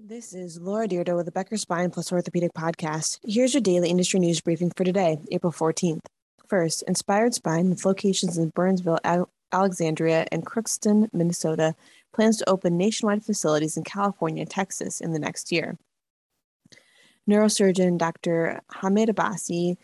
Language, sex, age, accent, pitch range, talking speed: English, female, 20-39, American, 165-200 Hz, 150 wpm